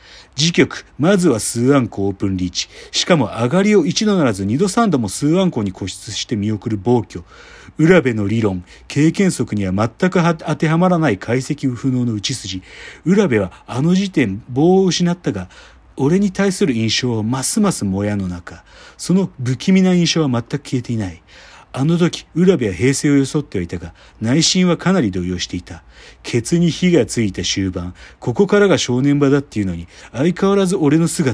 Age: 40-59